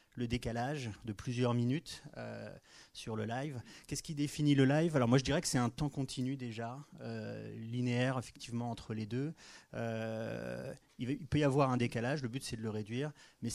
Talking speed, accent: 195 wpm, French